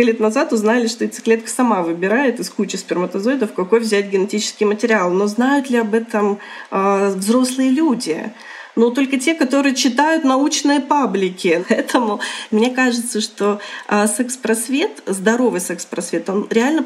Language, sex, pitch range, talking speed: Russian, female, 205-240 Hz, 140 wpm